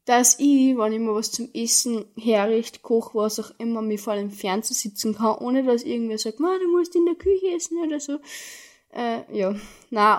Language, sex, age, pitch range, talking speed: German, female, 10-29, 210-235 Hz, 210 wpm